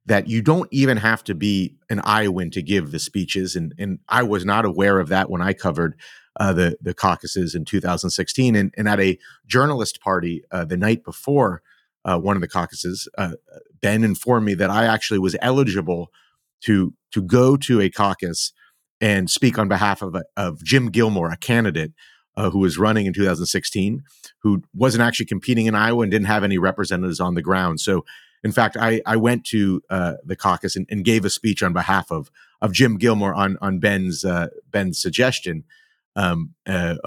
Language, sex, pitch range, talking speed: English, male, 95-115 Hz, 195 wpm